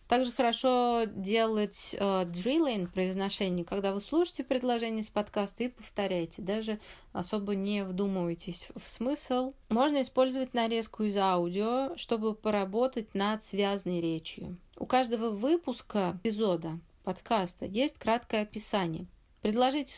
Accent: native